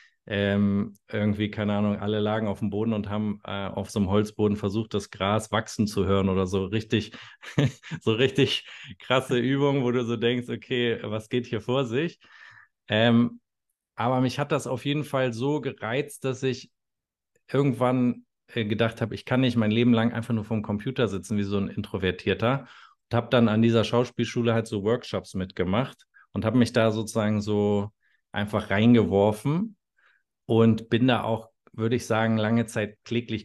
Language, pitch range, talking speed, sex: German, 105-125 Hz, 175 wpm, male